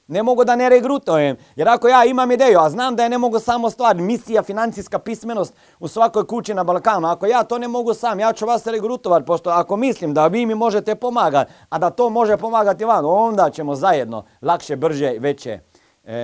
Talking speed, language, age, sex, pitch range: 210 wpm, Croatian, 40-59, male, 140-230 Hz